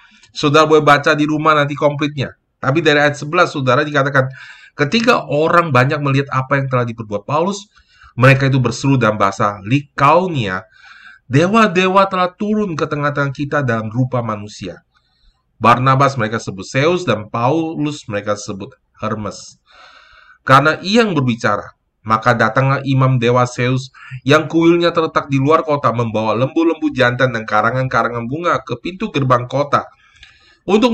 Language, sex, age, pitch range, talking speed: Indonesian, male, 20-39, 115-155 Hz, 140 wpm